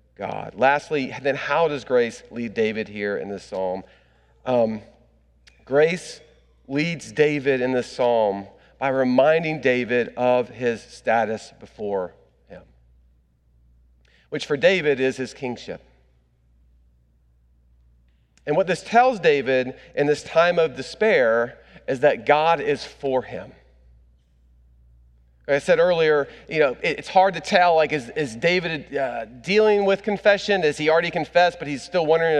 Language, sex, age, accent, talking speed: English, male, 40-59, American, 135 wpm